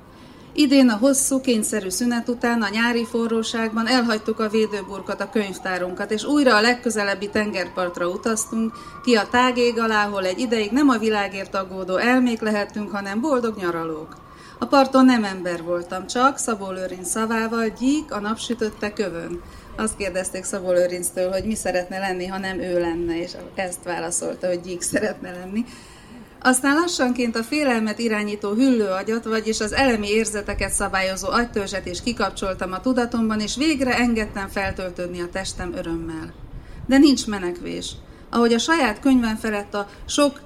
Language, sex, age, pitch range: Hungarian, female, 30-49, 185-240 Hz